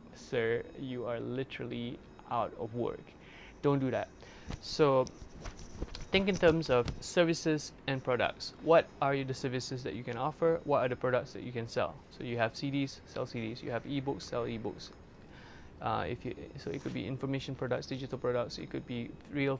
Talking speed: 175 wpm